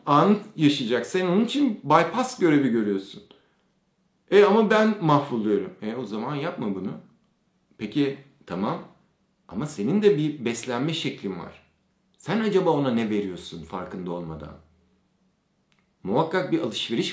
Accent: native